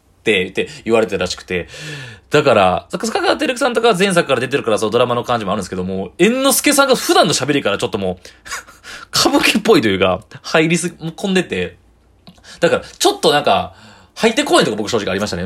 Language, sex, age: Japanese, male, 20-39